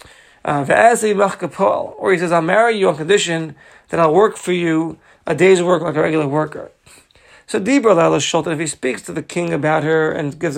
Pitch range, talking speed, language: 155-200 Hz, 180 wpm, English